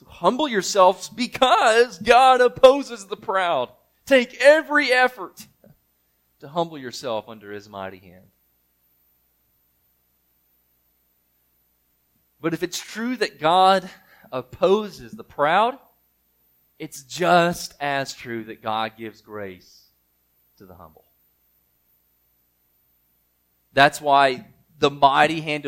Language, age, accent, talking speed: English, 30-49, American, 100 wpm